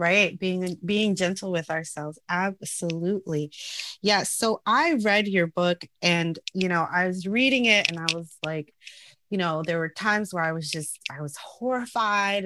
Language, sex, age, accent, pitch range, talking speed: English, female, 30-49, American, 165-210 Hz, 175 wpm